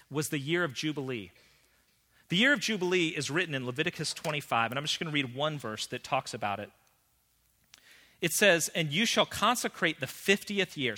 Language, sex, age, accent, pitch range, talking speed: English, male, 40-59, American, 130-185 Hz, 190 wpm